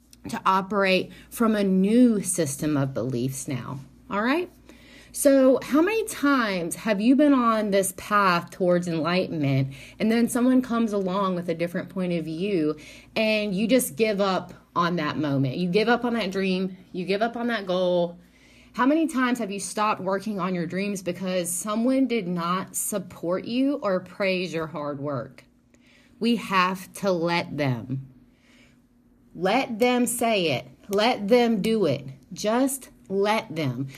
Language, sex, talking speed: English, female, 160 wpm